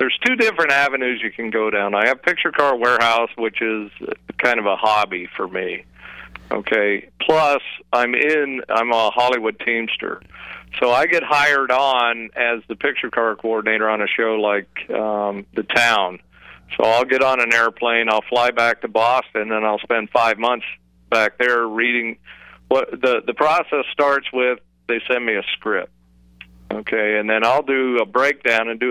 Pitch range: 105-125 Hz